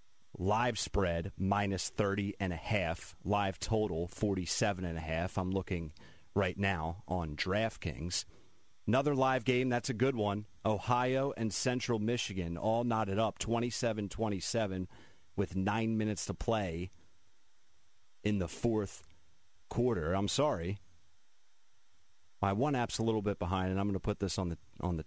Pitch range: 90-110 Hz